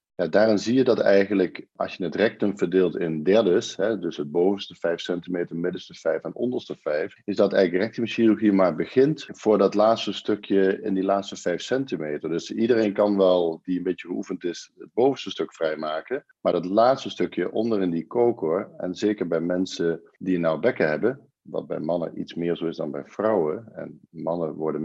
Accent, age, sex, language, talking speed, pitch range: Dutch, 50-69, male, Dutch, 190 wpm, 85-105 Hz